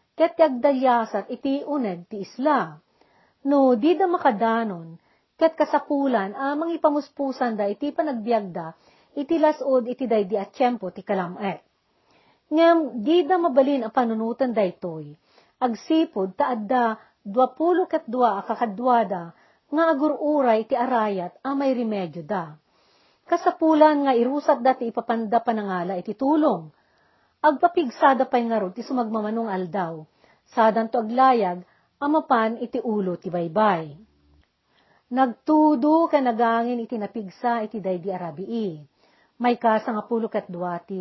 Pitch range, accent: 200-280 Hz, native